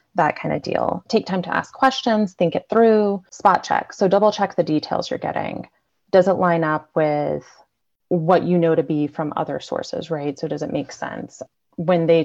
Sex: female